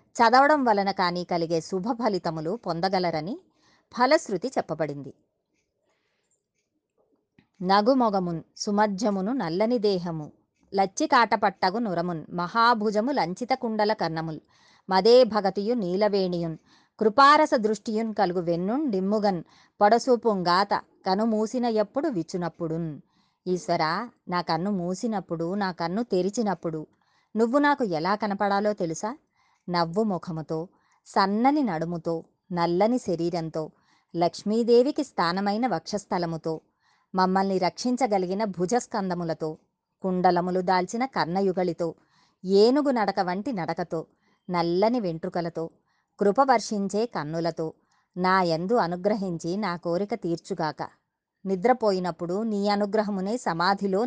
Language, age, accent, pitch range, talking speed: Telugu, 30-49, native, 175-220 Hz, 90 wpm